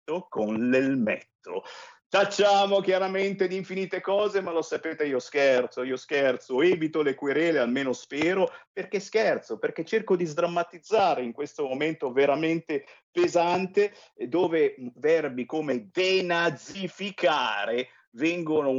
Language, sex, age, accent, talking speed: Italian, male, 50-69, native, 110 wpm